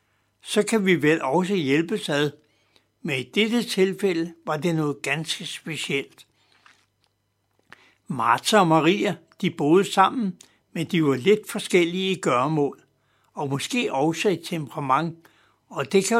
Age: 60-79